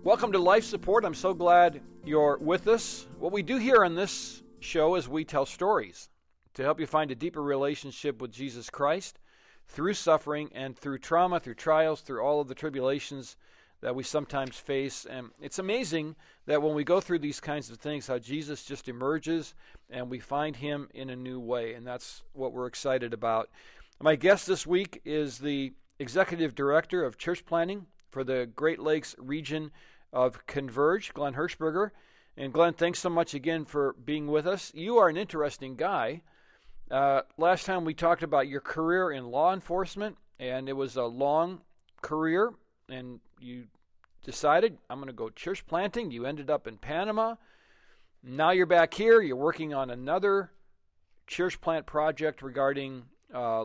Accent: American